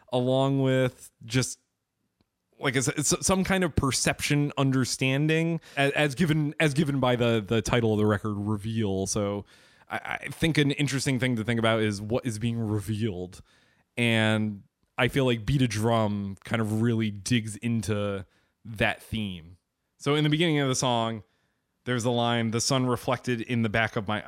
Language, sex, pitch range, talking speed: English, male, 115-135 Hz, 170 wpm